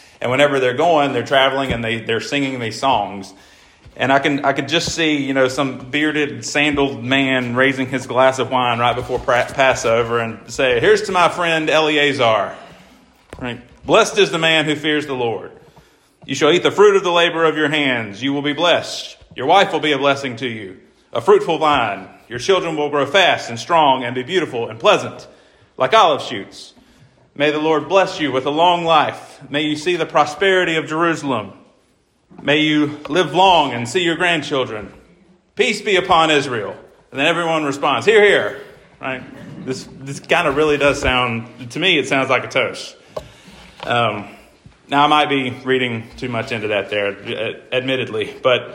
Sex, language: male, English